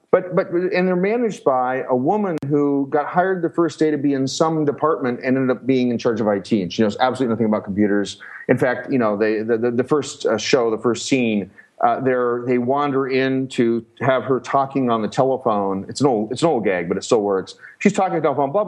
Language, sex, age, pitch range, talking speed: English, male, 40-59, 115-155 Hz, 240 wpm